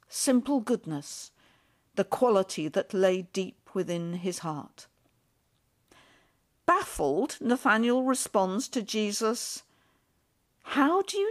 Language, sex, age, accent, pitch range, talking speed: English, female, 50-69, British, 195-260 Hz, 95 wpm